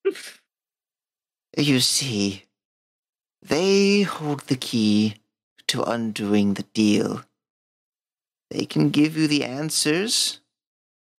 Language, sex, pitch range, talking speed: English, male, 105-160 Hz, 85 wpm